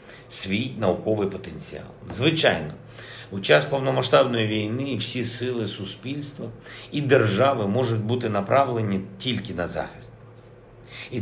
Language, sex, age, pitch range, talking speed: Ukrainian, male, 50-69, 100-130 Hz, 105 wpm